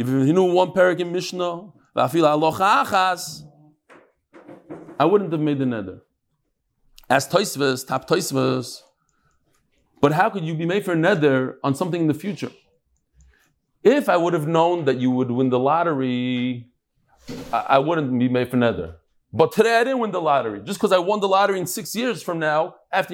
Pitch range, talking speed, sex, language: 155-225 Hz, 175 wpm, male, English